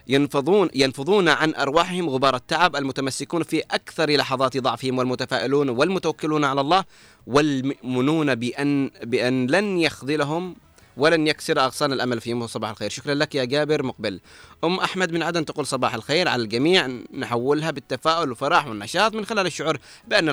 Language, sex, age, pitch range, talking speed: Arabic, male, 30-49, 125-155 Hz, 145 wpm